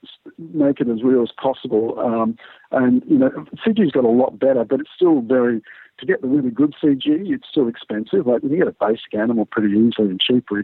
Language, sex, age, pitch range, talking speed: English, male, 50-69, 110-130 Hz, 220 wpm